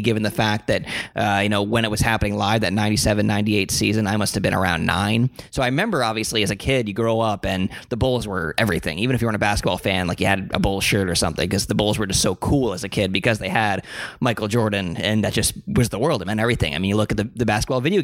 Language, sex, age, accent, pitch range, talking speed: English, male, 20-39, American, 100-120 Hz, 285 wpm